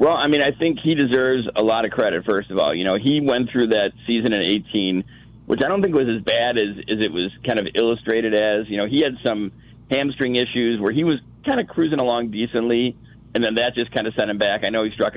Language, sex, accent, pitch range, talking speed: English, male, American, 105-125 Hz, 260 wpm